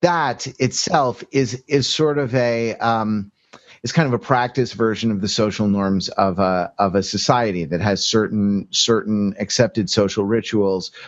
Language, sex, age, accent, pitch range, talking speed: English, male, 30-49, American, 105-135 Hz, 160 wpm